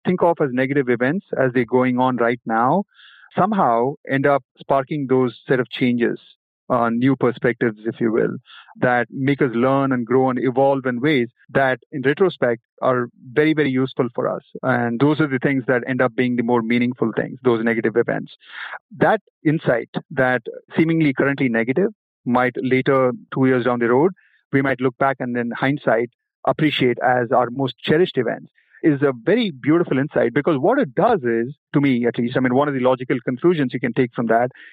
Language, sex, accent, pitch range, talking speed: English, male, Indian, 125-150 Hz, 195 wpm